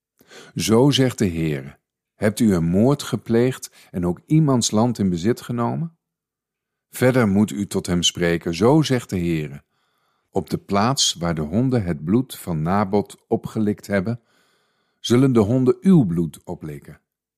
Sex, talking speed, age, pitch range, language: male, 150 wpm, 50-69, 90-125 Hz, Dutch